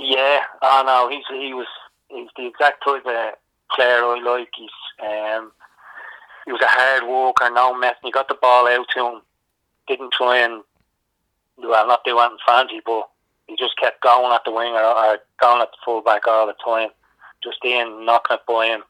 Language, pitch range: English, 105-120 Hz